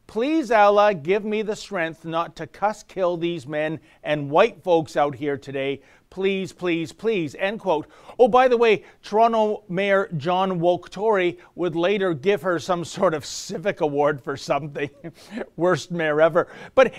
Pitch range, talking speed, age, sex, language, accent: 165-220 Hz, 160 wpm, 40-59, male, English, American